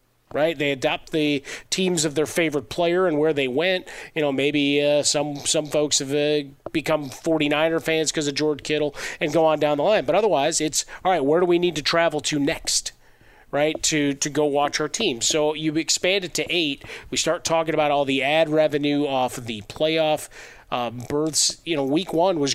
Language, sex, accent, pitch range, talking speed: English, male, American, 135-155 Hz, 210 wpm